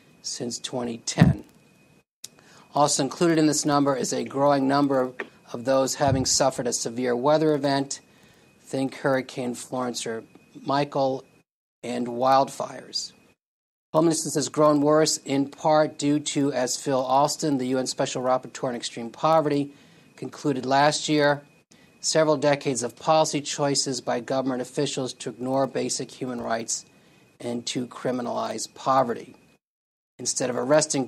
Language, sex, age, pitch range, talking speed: English, male, 40-59, 130-150 Hz, 130 wpm